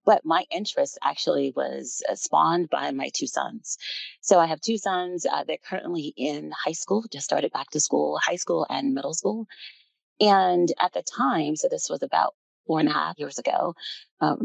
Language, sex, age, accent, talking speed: English, female, 30-49, American, 200 wpm